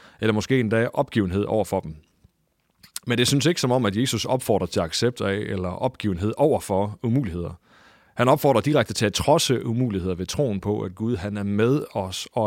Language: English